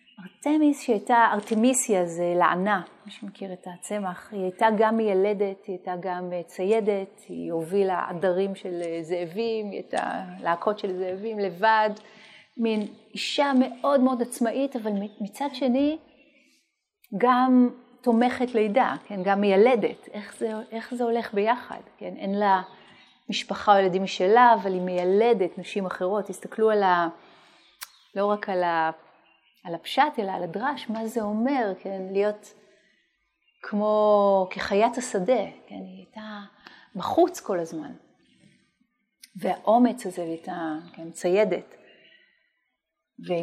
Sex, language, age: female, Hebrew, 30-49